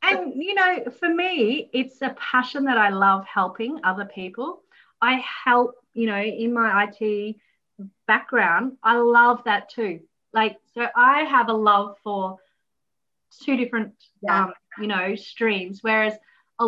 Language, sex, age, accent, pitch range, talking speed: English, female, 30-49, Australian, 190-225 Hz, 150 wpm